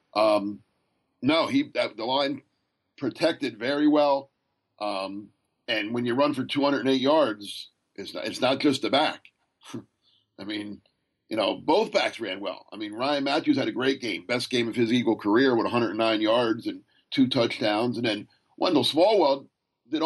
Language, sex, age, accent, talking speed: English, male, 50-69, American, 170 wpm